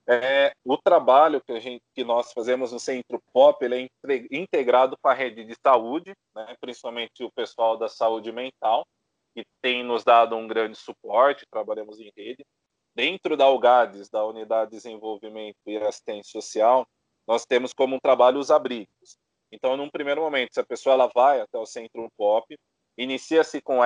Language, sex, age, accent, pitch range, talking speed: Portuguese, male, 20-39, Brazilian, 115-150 Hz, 175 wpm